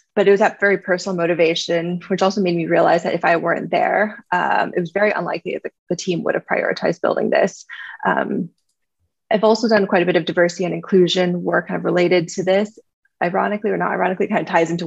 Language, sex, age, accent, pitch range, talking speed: English, female, 20-39, American, 175-200 Hz, 220 wpm